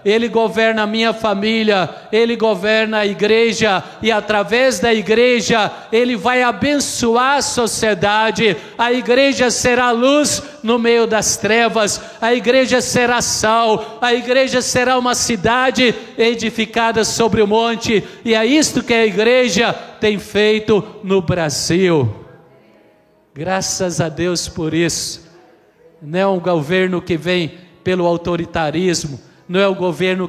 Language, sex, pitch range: Portuguese, male, 180-230 Hz